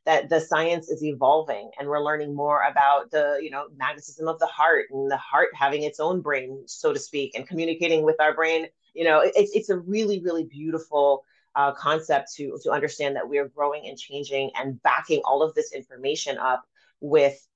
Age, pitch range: 30-49, 135-170 Hz